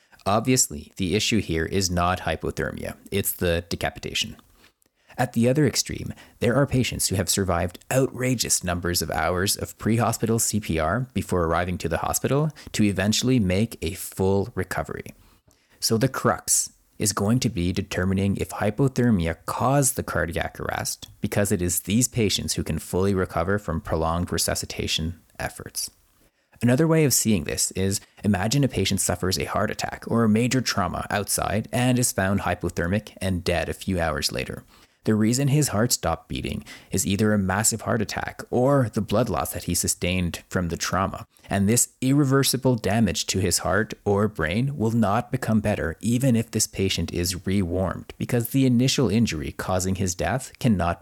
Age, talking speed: 30-49, 165 wpm